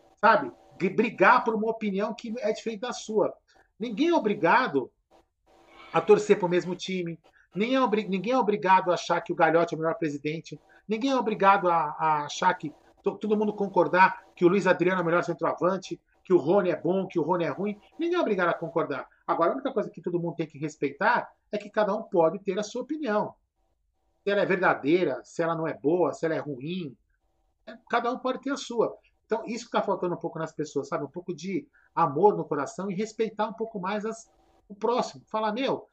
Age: 40-59